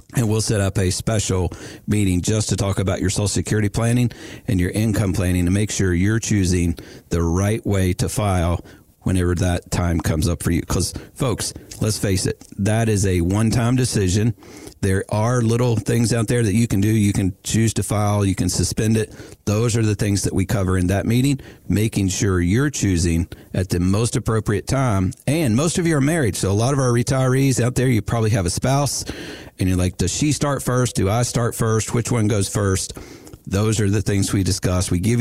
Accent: American